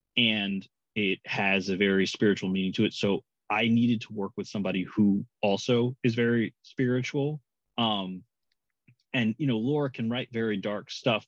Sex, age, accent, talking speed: male, 30-49, American, 165 wpm